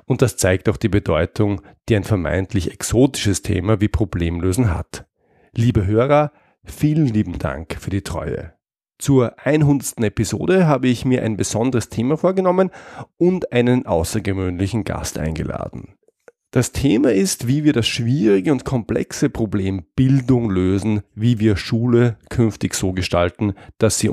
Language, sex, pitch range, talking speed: German, male, 100-125 Hz, 140 wpm